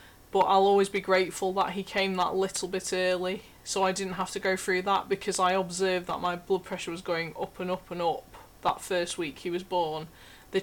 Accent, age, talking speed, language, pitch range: British, 20-39, 230 wpm, English, 180-210 Hz